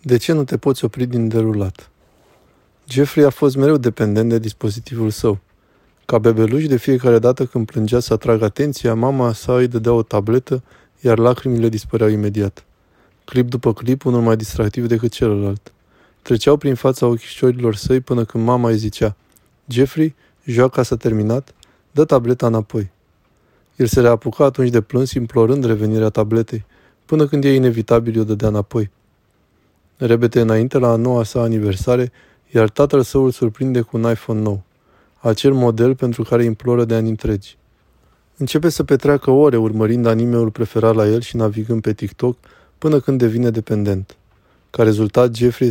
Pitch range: 110-125 Hz